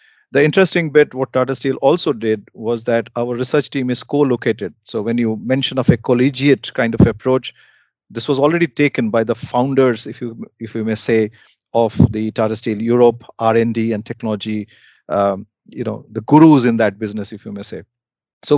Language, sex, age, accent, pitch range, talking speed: English, male, 40-59, Indian, 115-135 Hz, 180 wpm